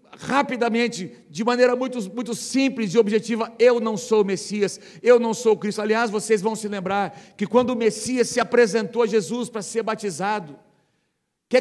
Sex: male